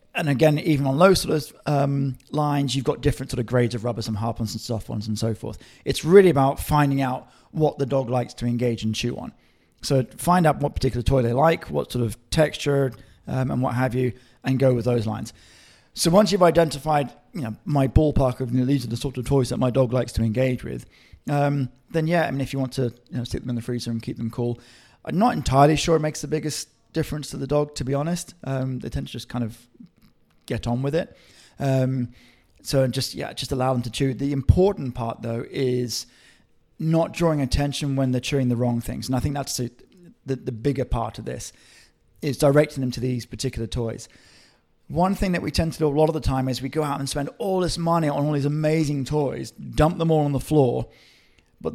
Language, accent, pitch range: English, British, 125-150 Hz